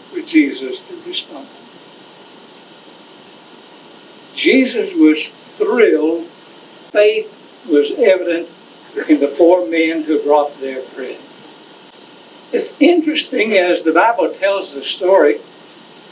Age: 60-79